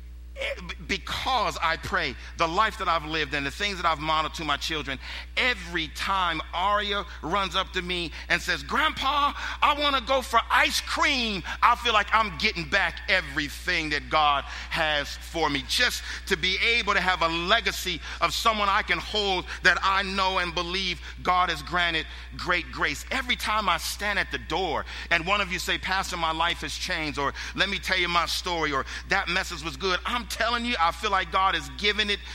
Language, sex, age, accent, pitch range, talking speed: English, male, 50-69, American, 155-215 Hz, 200 wpm